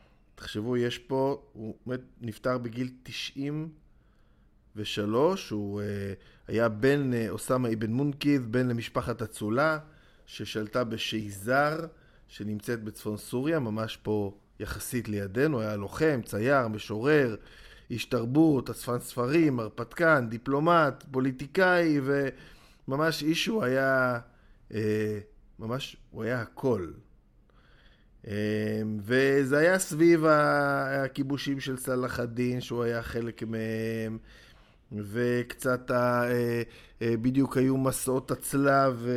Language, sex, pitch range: Hebrew, male, 110-140 Hz